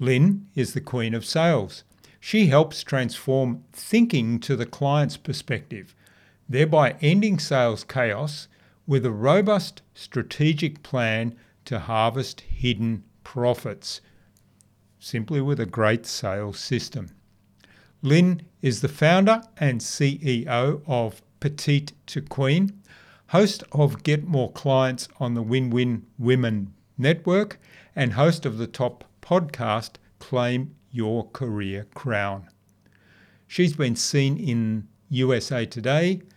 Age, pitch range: 50-69, 110-150 Hz